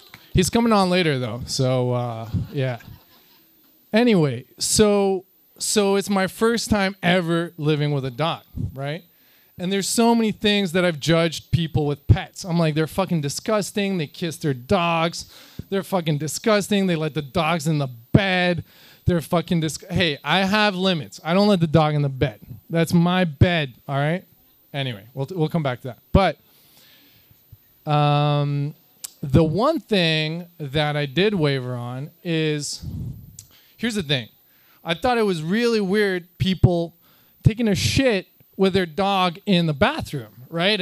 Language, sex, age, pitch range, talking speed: English, male, 20-39, 145-195 Hz, 160 wpm